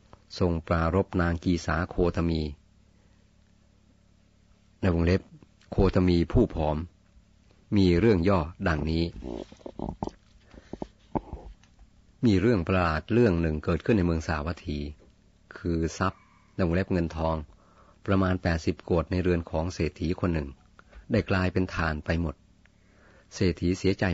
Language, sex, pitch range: Thai, male, 85-100 Hz